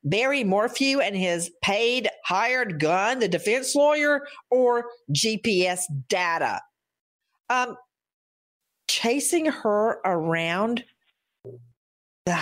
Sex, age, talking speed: female, 50-69, 85 wpm